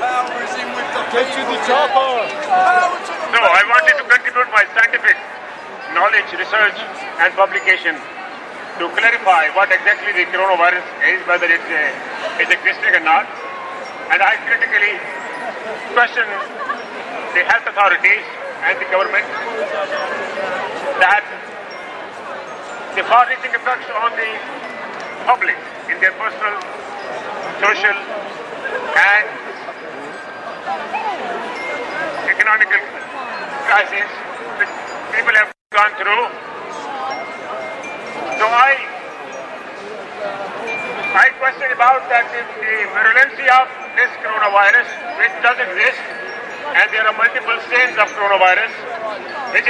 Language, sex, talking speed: English, male, 90 wpm